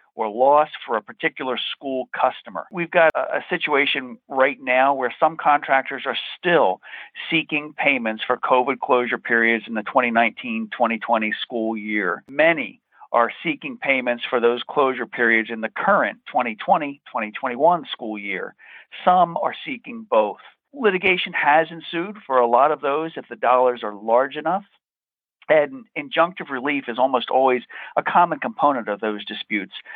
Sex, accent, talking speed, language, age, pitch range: male, American, 145 wpm, English, 50-69, 120-155 Hz